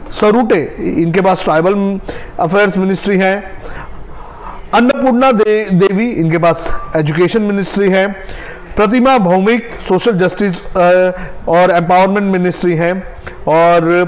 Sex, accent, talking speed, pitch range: male, native, 100 wpm, 160-210 Hz